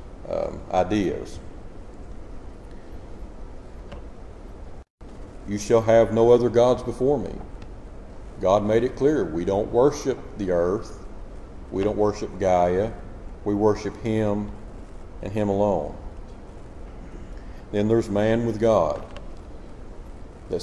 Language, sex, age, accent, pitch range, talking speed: English, male, 50-69, American, 95-120 Hz, 100 wpm